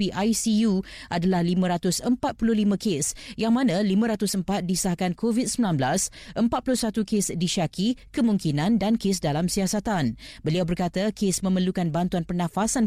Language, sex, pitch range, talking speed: Malay, female, 175-225 Hz, 105 wpm